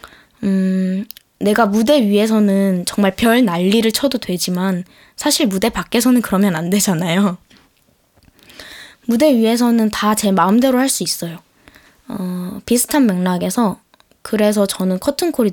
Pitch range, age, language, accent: 185-235 Hz, 20-39, Korean, native